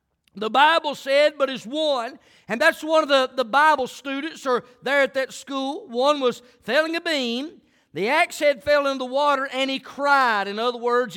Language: English